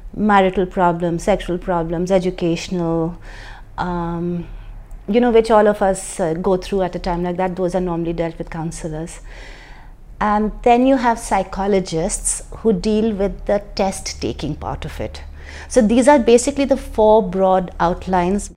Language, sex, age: English, female, 30-49